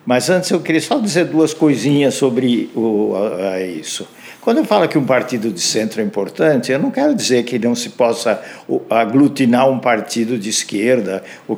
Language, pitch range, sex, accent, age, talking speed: Portuguese, 120-160 Hz, male, Brazilian, 60-79, 175 wpm